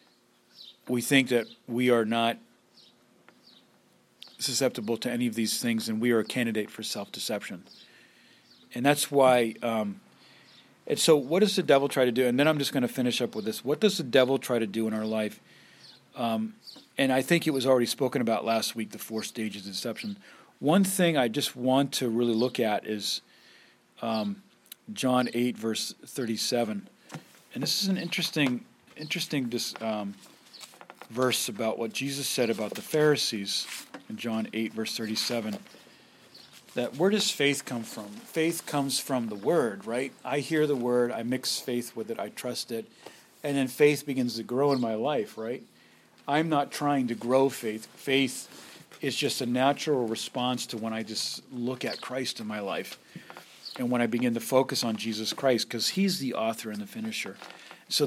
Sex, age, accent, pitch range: male, 40-59, American, 115-140 Hz